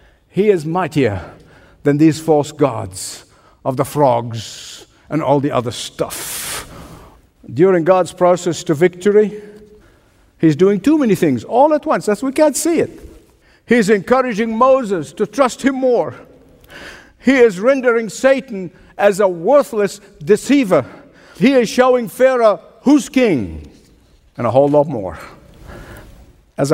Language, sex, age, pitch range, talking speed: English, male, 60-79, 150-210 Hz, 130 wpm